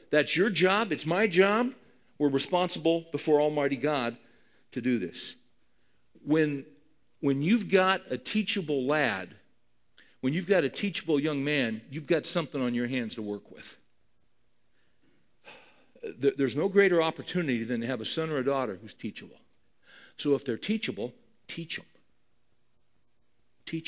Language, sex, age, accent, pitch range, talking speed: English, male, 50-69, American, 135-195 Hz, 145 wpm